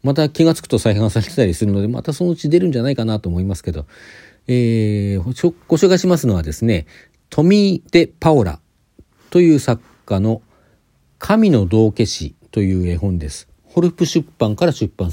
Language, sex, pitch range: Japanese, male, 95-150 Hz